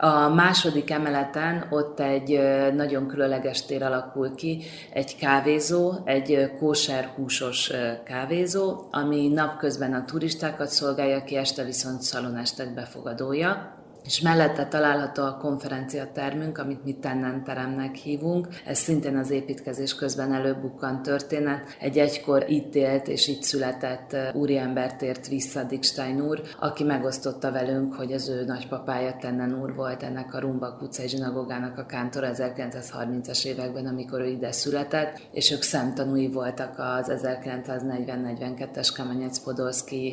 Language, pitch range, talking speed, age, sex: Hungarian, 130-145 Hz, 125 wpm, 30-49, female